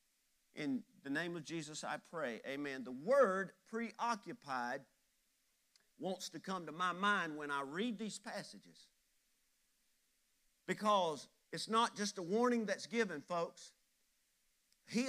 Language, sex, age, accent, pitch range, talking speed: English, male, 50-69, American, 180-235 Hz, 125 wpm